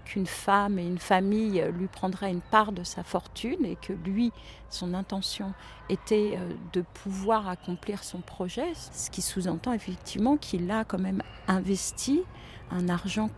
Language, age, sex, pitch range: French, 40-59, female, 180-215 Hz